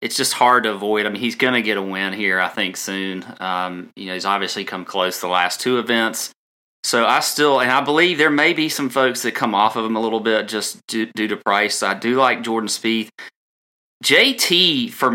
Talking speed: 235 wpm